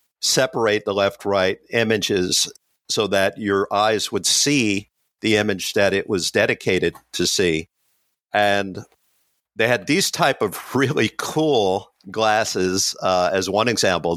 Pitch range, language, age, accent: 95-120 Hz, English, 50-69, American